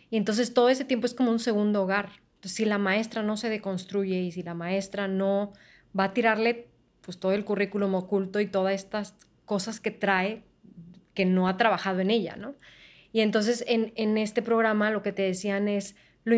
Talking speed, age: 200 wpm, 20-39